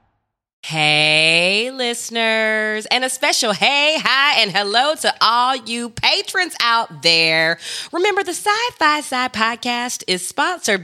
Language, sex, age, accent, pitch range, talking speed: English, female, 20-39, American, 175-285 Hz, 120 wpm